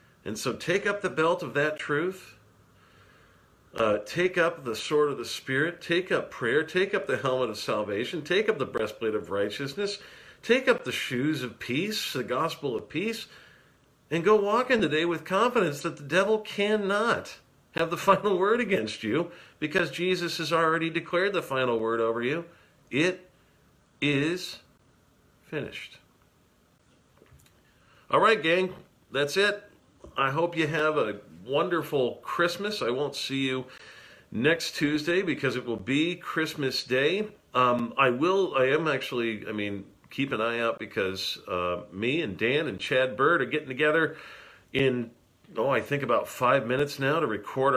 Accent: American